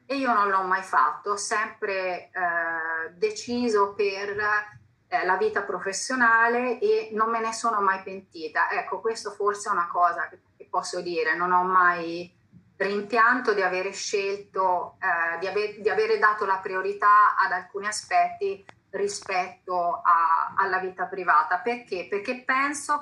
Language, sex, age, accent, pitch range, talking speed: Italian, female, 30-49, native, 180-240 Hz, 145 wpm